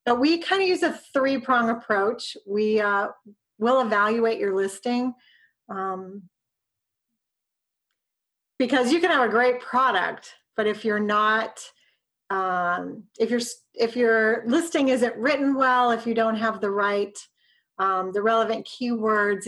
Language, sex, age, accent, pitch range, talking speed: English, female, 40-59, American, 205-250 Hz, 140 wpm